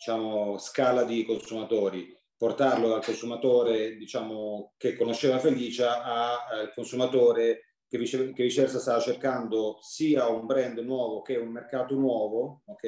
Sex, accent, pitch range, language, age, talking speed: male, native, 110-140 Hz, Italian, 30-49, 125 wpm